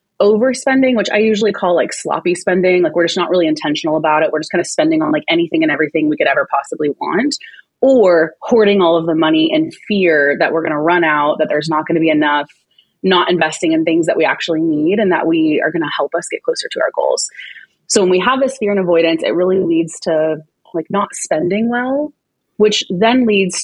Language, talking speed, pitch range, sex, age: English, 235 wpm, 165-215 Hz, female, 20-39